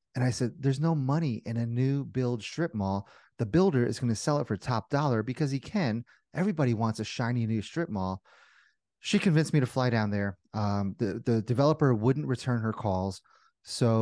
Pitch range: 110-140 Hz